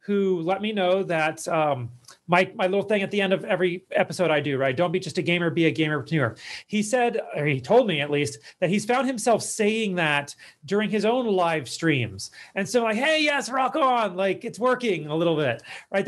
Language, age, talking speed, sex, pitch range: English, 30-49, 225 wpm, male, 155-210 Hz